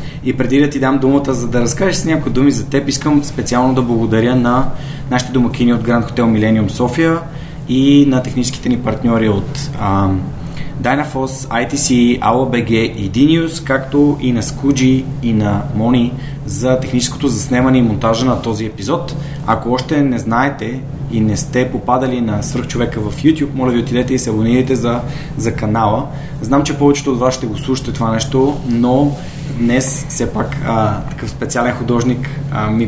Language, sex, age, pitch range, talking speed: Bulgarian, male, 20-39, 120-140 Hz, 175 wpm